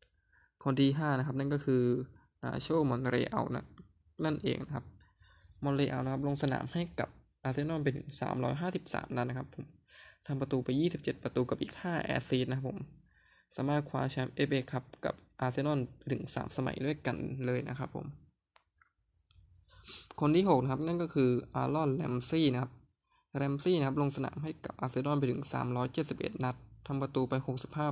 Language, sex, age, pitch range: Thai, male, 20-39, 125-145 Hz